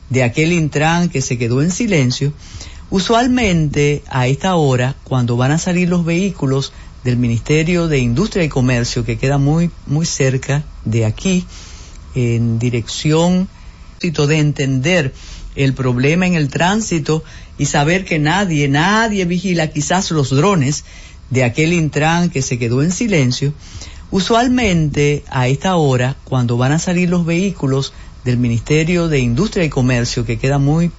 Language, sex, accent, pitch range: Spanish, female, American, 125-170 Hz